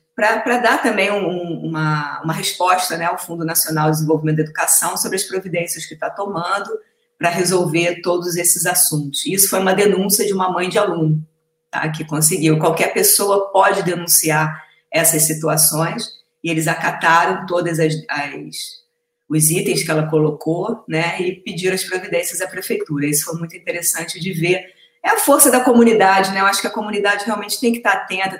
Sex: female